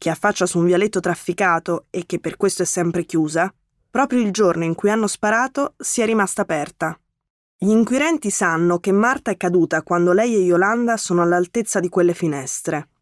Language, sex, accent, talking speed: Italian, female, native, 185 wpm